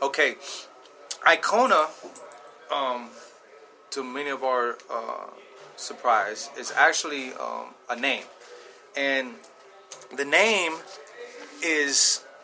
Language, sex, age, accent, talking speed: English, male, 30-49, American, 85 wpm